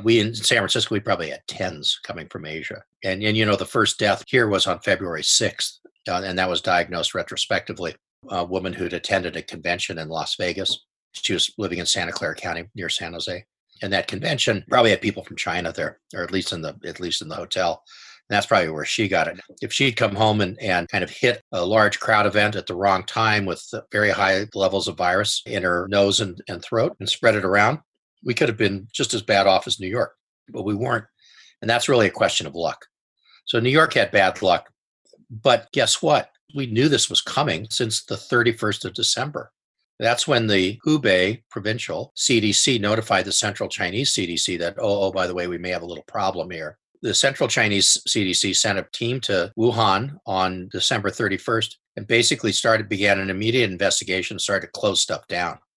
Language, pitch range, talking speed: English, 95-115 Hz, 210 wpm